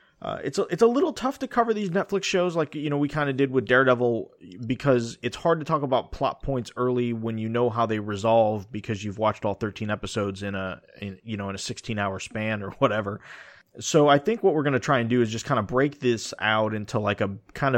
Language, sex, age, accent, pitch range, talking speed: English, male, 20-39, American, 105-130 Hz, 245 wpm